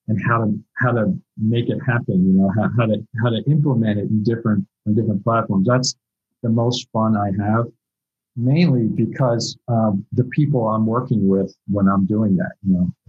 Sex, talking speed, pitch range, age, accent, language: male, 195 wpm, 100-115 Hz, 50-69, American, English